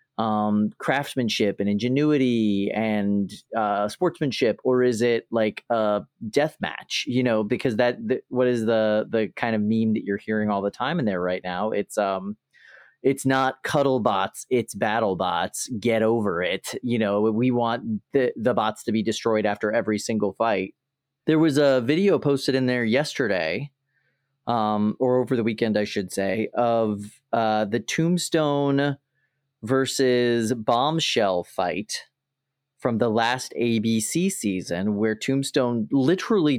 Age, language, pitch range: 30-49, English, 105-135 Hz